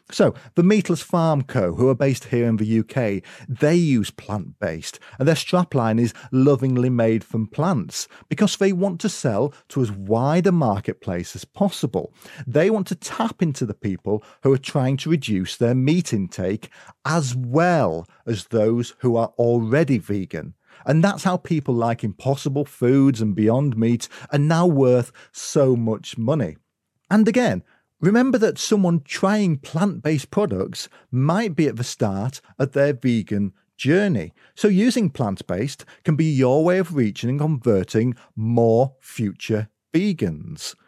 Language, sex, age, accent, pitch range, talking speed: English, male, 40-59, British, 115-165 Hz, 155 wpm